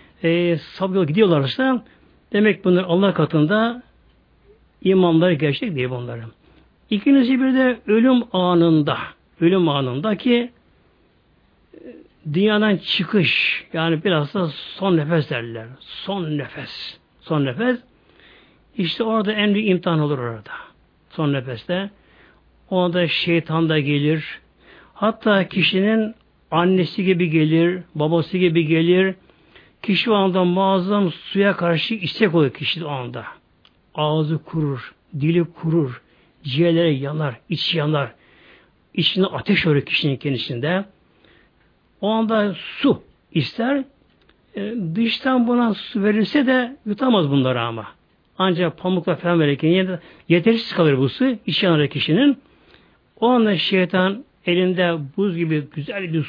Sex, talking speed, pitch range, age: male, 115 wpm, 150-205 Hz, 60-79